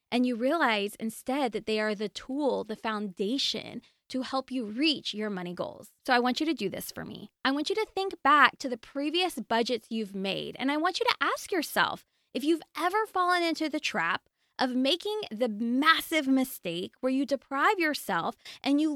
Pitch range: 215-295 Hz